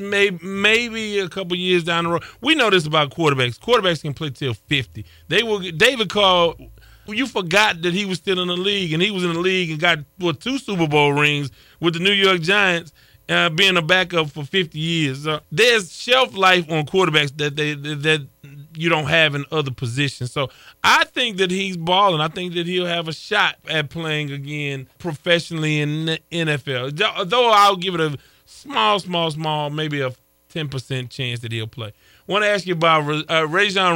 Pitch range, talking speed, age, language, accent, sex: 145-190 Hz, 205 wpm, 20-39, English, American, male